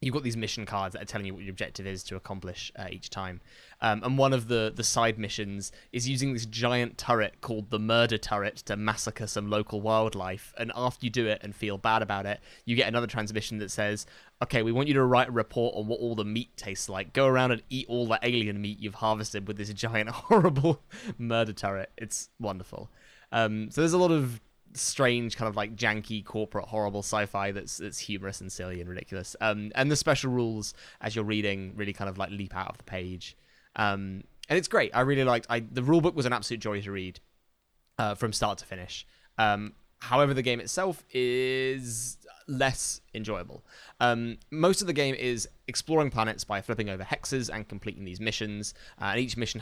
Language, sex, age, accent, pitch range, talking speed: English, male, 10-29, British, 100-120 Hz, 215 wpm